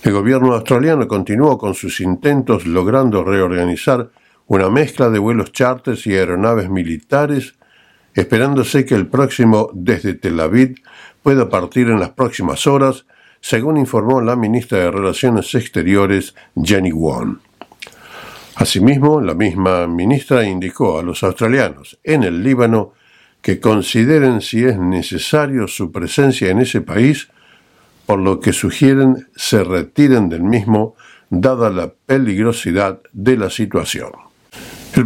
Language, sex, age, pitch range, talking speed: Spanish, male, 60-79, 95-130 Hz, 130 wpm